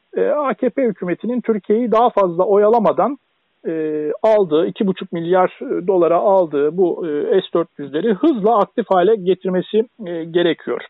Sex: male